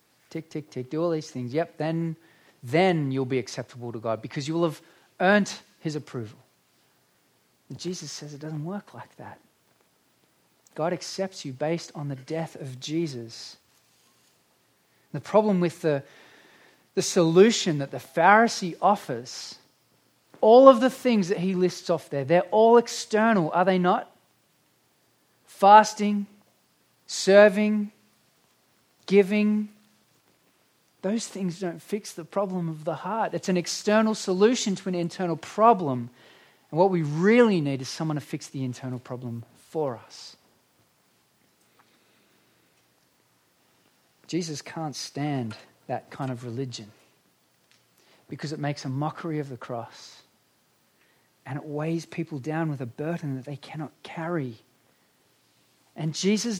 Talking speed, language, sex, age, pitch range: 135 wpm, English, male, 30-49, 145-200 Hz